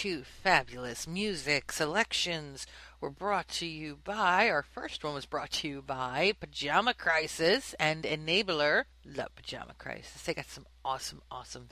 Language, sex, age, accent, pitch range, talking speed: English, female, 40-59, American, 150-210 Hz, 150 wpm